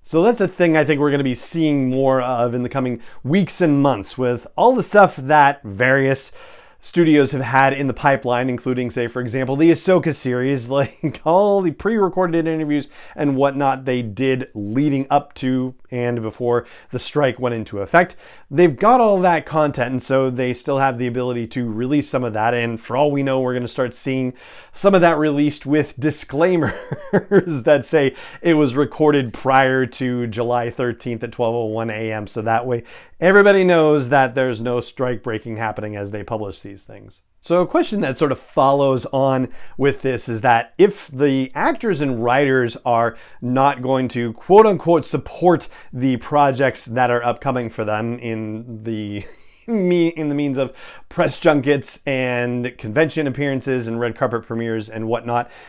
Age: 30-49